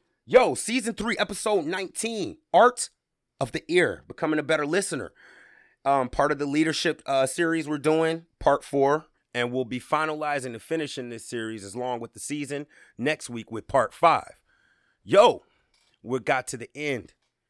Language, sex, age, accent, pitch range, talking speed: English, male, 30-49, American, 115-145 Hz, 165 wpm